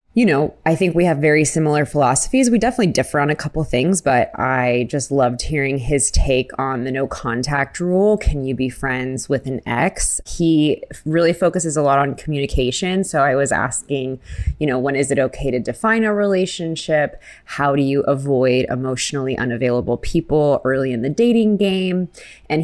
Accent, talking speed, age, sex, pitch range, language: American, 185 wpm, 20-39, female, 130-165 Hz, English